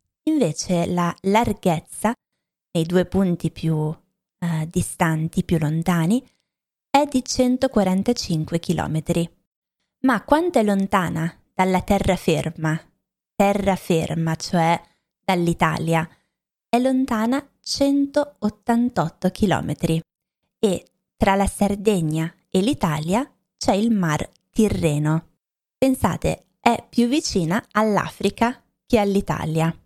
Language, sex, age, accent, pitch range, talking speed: Italian, female, 20-39, native, 165-215 Hz, 90 wpm